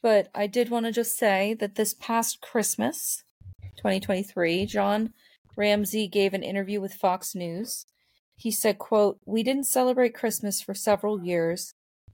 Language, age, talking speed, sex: English, 30-49, 150 wpm, female